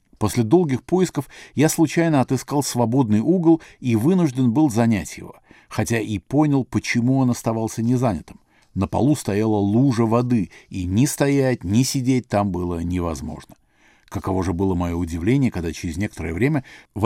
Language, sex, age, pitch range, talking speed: Russian, male, 50-69, 95-130 Hz, 150 wpm